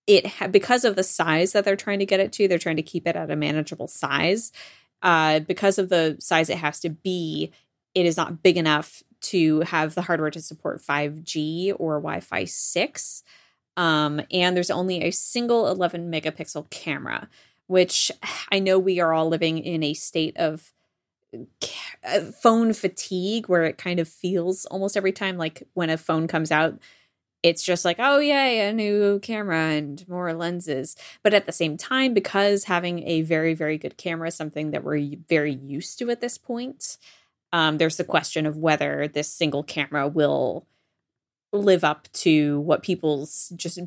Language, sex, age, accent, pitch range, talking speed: English, female, 20-39, American, 155-190 Hz, 180 wpm